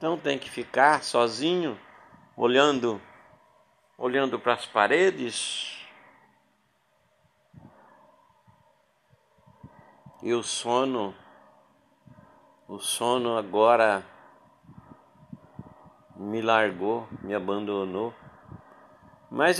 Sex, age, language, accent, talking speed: male, 60-79, Portuguese, Brazilian, 65 wpm